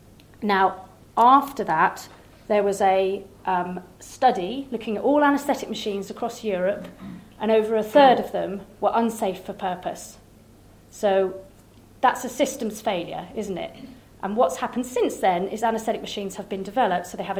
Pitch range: 190-250 Hz